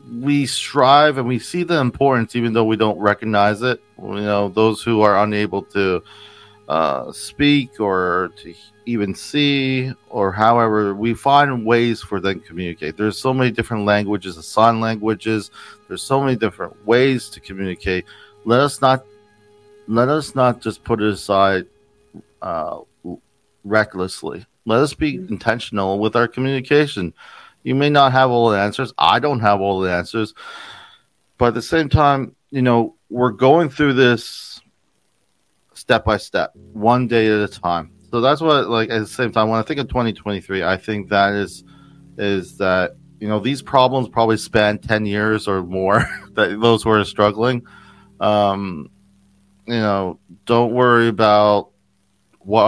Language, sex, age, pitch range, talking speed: English, male, 40-59, 100-125 Hz, 160 wpm